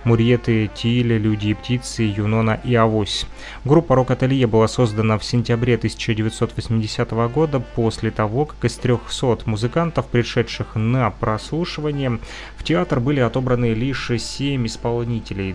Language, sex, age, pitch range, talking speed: Russian, male, 30-49, 110-125 Hz, 125 wpm